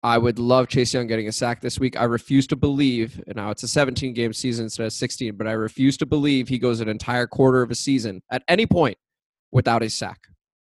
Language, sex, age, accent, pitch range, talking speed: English, male, 20-39, American, 120-145 Hz, 235 wpm